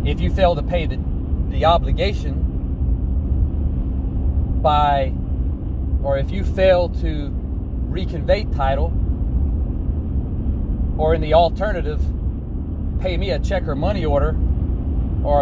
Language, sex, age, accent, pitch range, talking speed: English, male, 30-49, American, 65-80 Hz, 110 wpm